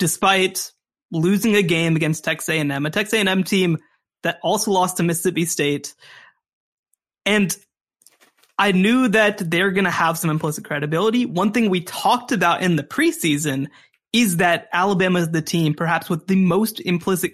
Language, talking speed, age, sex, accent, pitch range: English, 165 wpm, 20-39, male, American, 170-245 Hz